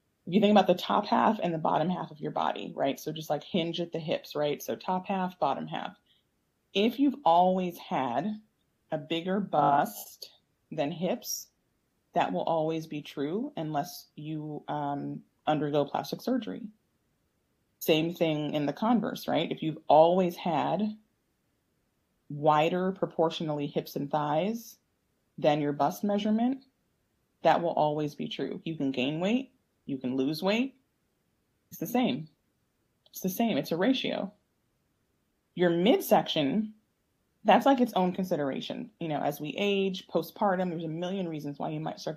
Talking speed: 155 wpm